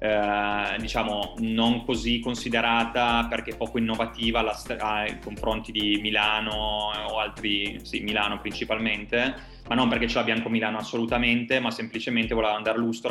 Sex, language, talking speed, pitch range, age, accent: male, Italian, 140 wpm, 110-120 Hz, 20-39, native